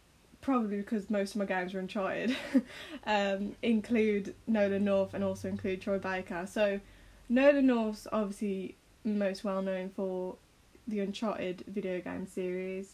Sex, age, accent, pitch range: female, 10-29, British, 195-220 Hz